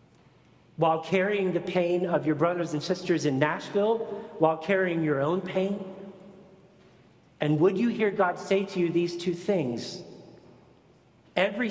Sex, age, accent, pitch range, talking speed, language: male, 40-59, American, 140-185 Hz, 145 wpm, English